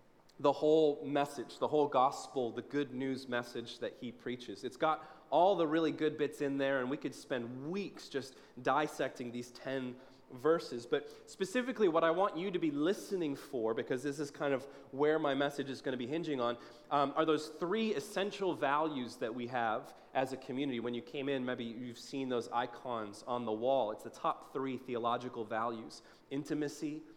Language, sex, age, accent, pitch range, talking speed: English, male, 30-49, American, 125-155 Hz, 190 wpm